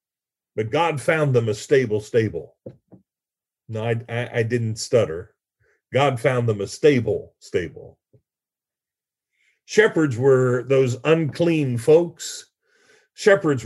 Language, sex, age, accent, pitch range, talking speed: English, male, 50-69, American, 120-180 Hz, 110 wpm